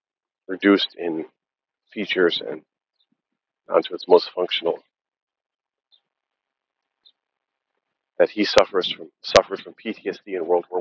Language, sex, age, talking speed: English, male, 40-59, 100 wpm